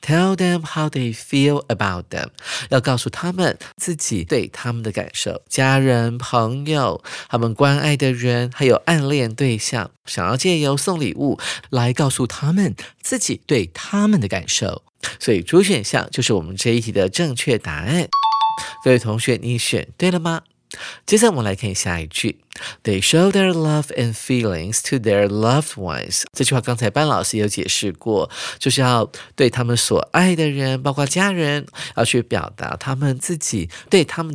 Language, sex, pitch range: Chinese, male, 115-155 Hz